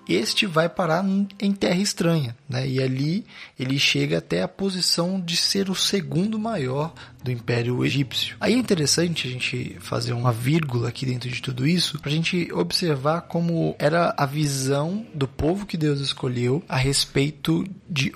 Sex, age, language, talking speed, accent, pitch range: male, 20-39, Portuguese, 165 wpm, Brazilian, 135-170 Hz